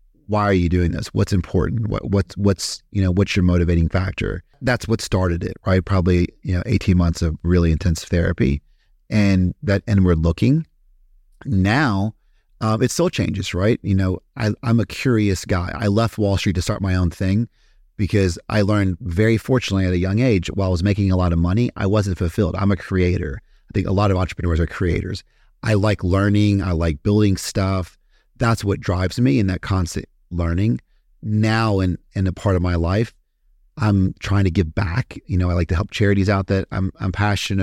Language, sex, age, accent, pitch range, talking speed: English, male, 40-59, American, 90-105 Hz, 205 wpm